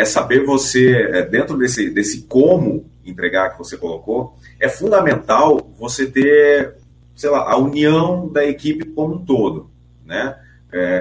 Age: 40-59